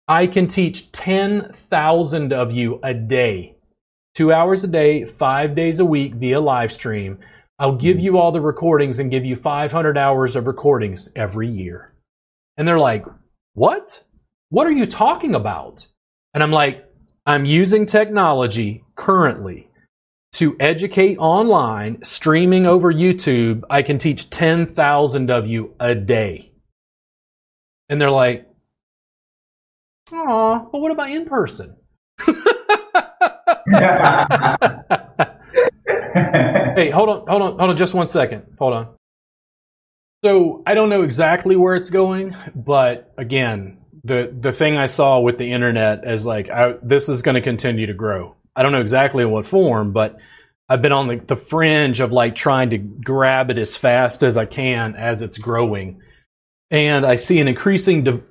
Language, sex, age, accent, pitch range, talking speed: English, male, 30-49, American, 120-180 Hz, 150 wpm